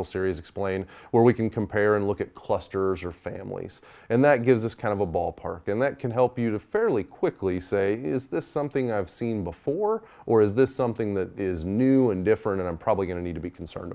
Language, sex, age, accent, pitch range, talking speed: English, male, 30-49, American, 95-125 Hz, 230 wpm